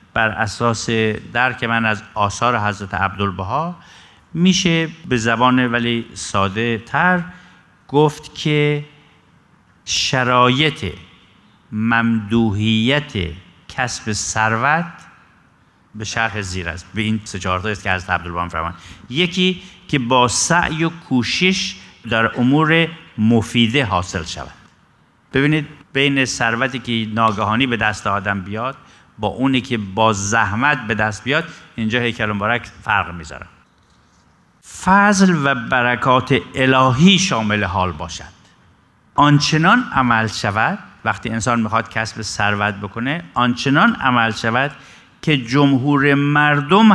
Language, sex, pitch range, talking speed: Persian, male, 105-145 Hz, 110 wpm